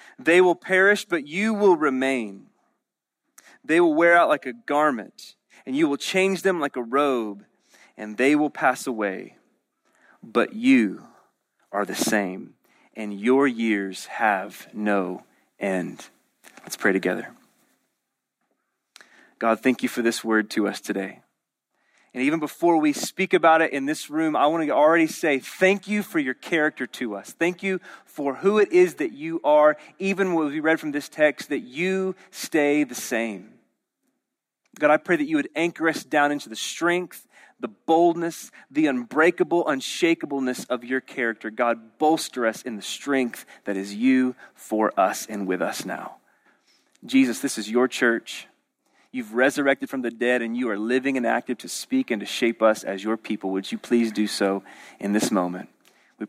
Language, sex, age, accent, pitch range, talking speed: English, male, 30-49, American, 115-170 Hz, 175 wpm